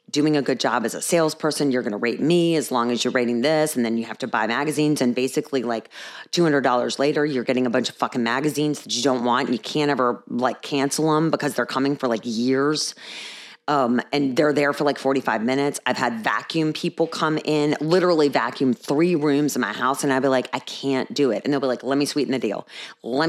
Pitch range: 130-175 Hz